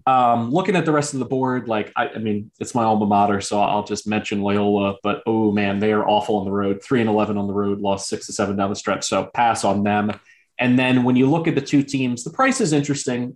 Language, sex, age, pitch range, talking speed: English, male, 20-39, 105-120 Hz, 270 wpm